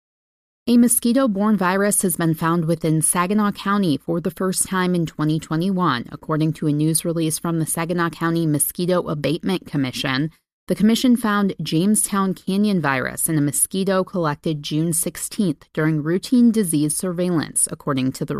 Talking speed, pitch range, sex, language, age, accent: 150 wpm, 155-205 Hz, female, English, 30-49, American